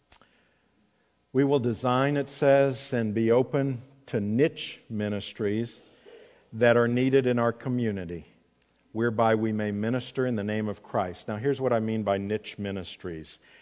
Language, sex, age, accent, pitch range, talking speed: English, male, 50-69, American, 105-135 Hz, 150 wpm